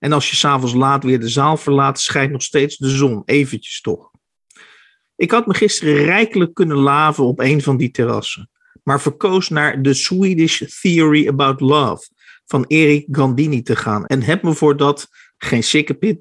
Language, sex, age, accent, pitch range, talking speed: Dutch, male, 50-69, Dutch, 135-170 Hz, 180 wpm